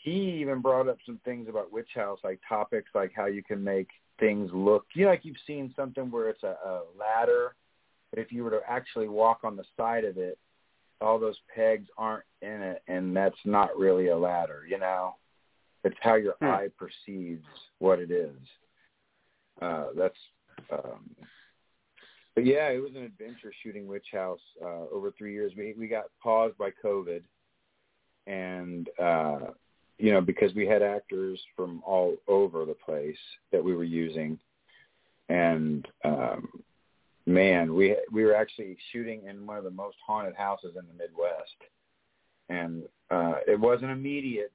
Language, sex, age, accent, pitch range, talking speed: English, male, 40-59, American, 95-125 Hz, 170 wpm